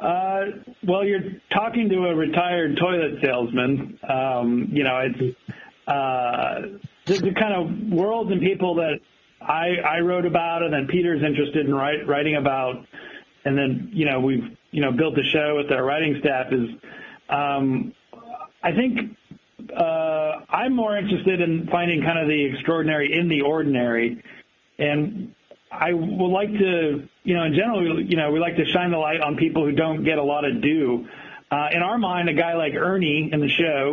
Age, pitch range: 40-59, 140-180 Hz